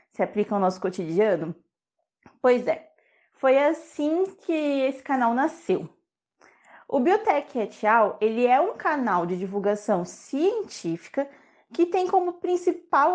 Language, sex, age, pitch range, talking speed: Portuguese, female, 20-39, 220-325 Hz, 125 wpm